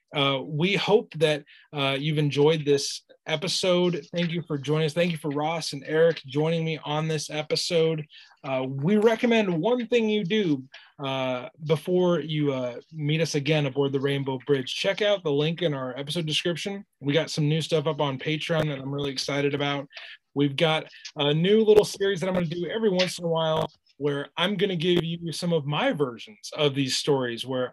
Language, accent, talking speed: English, American, 205 wpm